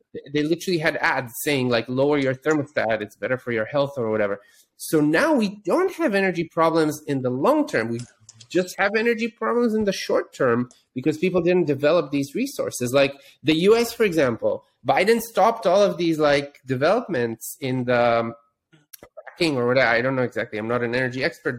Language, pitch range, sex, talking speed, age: English, 130-180 Hz, male, 185 wpm, 30-49